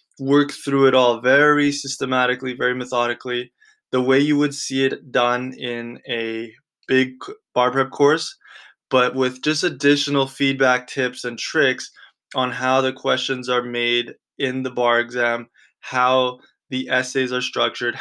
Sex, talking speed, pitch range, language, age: male, 145 wpm, 125-135 Hz, English, 20-39